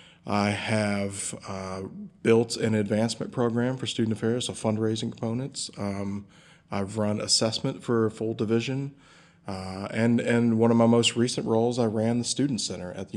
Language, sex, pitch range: English, male, 100-120 Hz